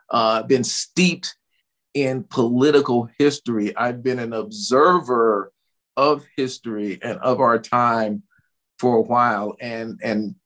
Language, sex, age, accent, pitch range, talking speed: English, male, 50-69, American, 115-145 Hz, 120 wpm